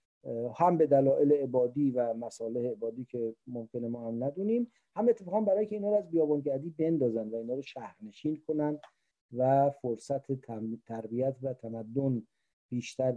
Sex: male